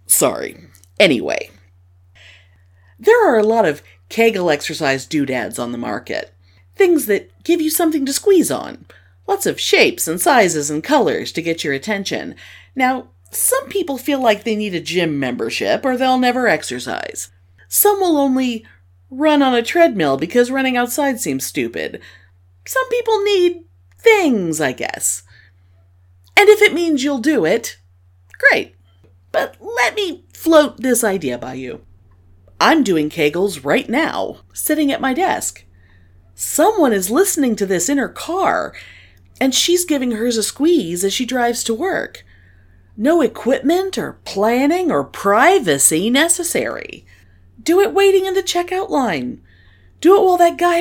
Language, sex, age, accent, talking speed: English, female, 40-59, American, 150 wpm